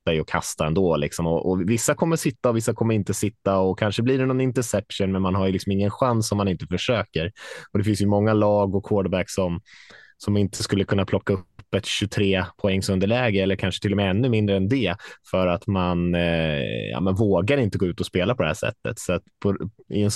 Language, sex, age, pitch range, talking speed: Swedish, male, 20-39, 95-110 Hz, 240 wpm